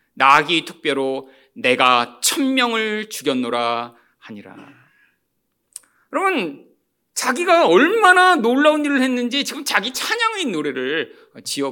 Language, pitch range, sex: Korean, 220-340 Hz, male